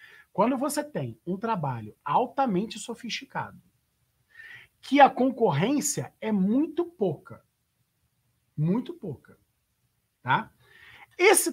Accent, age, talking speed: Brazilian, 50-69, 85 wpm